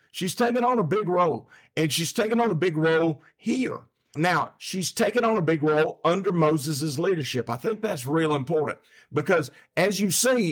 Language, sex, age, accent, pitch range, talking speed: English, male, 50-69, American, 150-210 Hz, 190 wpm